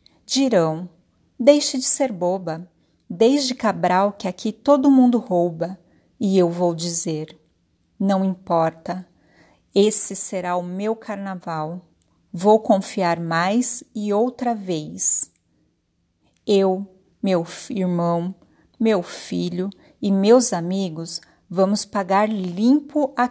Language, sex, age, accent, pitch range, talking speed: Portuguese, female, 40-59, Brazilian, 170-220 Hz, 105 wpm